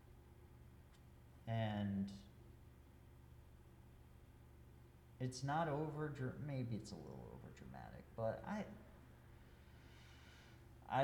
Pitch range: 75-120 Hz